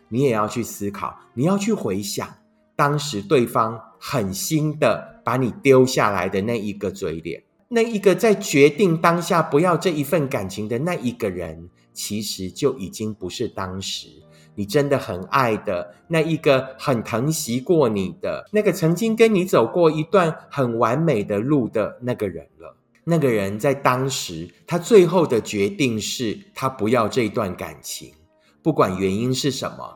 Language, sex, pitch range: Chinese, male, 105-170 Hz